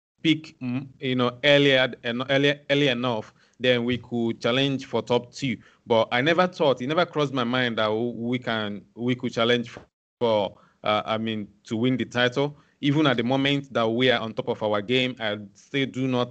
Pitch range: 115-135 Hz